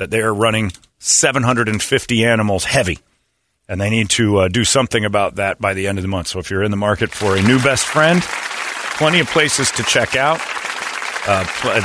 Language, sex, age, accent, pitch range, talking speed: English, male, 40-59, American, 90-110 Hz, 205 wpm